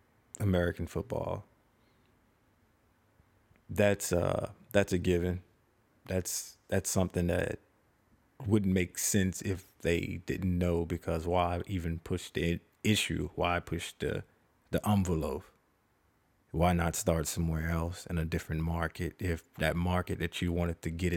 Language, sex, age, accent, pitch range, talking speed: English, male, 30-49, American, 85-100 Hz, 130 wpm